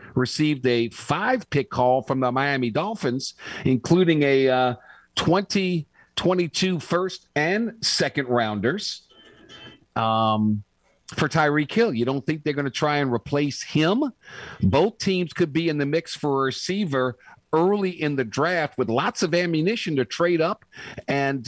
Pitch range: 120-160 Hz